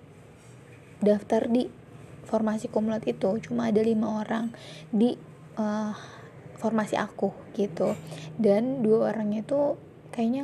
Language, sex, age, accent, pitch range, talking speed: Indonesian, female, 20-39, native, 200-225 Hz, 110 wpm